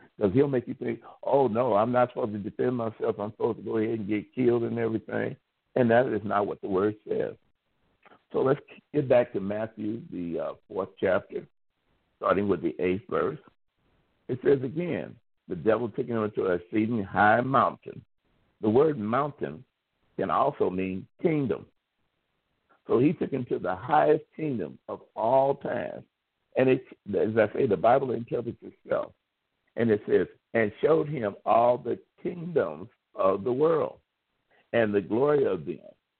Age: 60-79